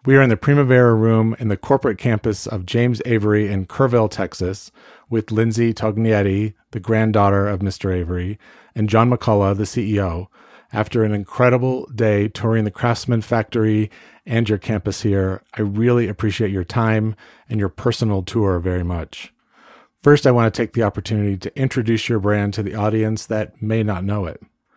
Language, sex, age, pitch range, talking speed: English, male, 40-59, 100-115 Hz, 170 wpm